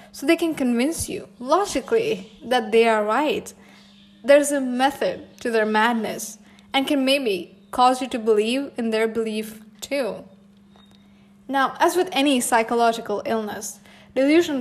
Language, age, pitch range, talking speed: English, 10-29, 210-275 Hz, 145 wpm